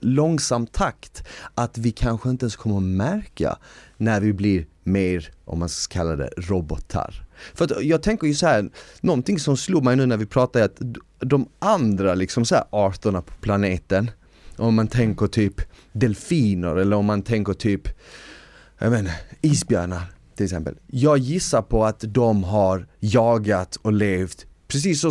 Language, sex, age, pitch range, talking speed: Swedish, male, 30-49, 95-130 Hz, 165 wpm